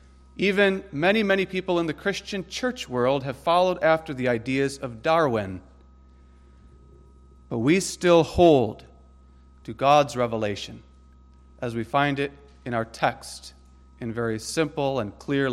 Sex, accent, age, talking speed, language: male, American, 40-59, 135 wpm, English